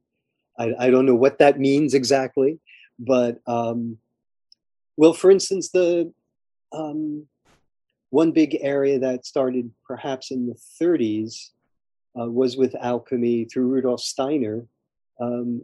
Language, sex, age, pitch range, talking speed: English, male, 40-59, 110-130 Hz, 125 wpm